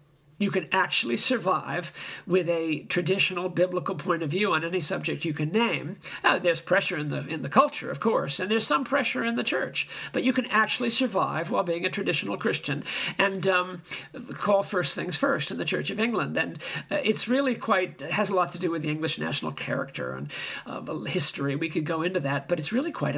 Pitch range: 160-215 Hz